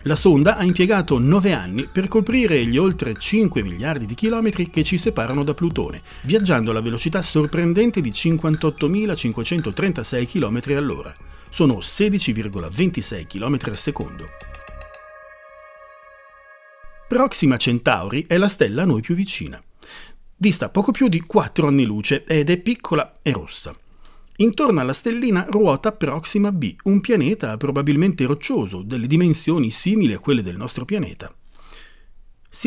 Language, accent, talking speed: Italian, native, 130 wpm